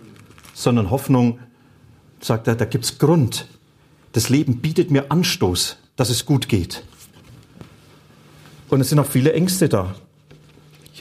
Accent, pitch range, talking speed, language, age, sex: German, 115-150 Hz, 135 wpm, German, 40-59, male